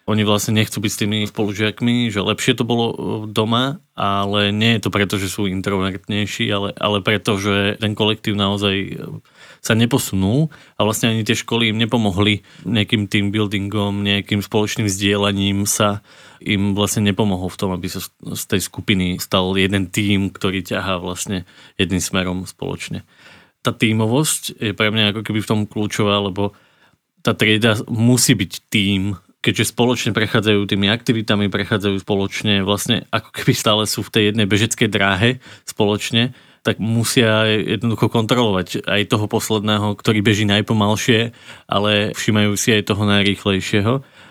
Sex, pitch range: male, 100-115 Hz